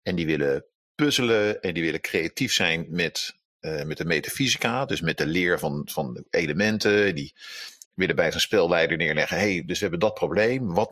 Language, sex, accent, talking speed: Dutch, male, Dutch, 185 wpm